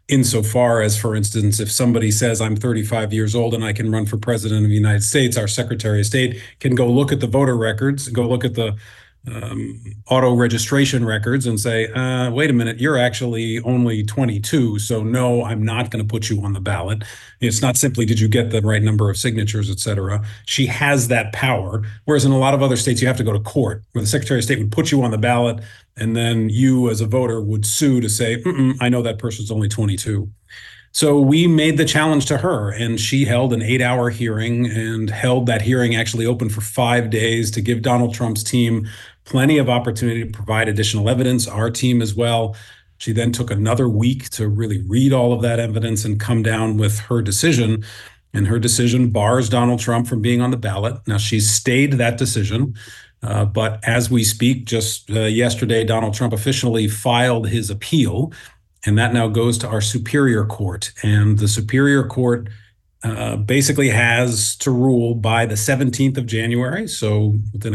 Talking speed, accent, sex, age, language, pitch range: 200 wpm, American, male, 40-59, English, 110-125 Hz